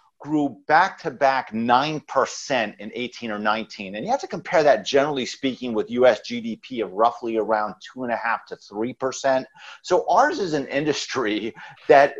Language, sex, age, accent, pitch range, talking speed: English, male, 40-59, American, 115-155 Hz, 150 wpm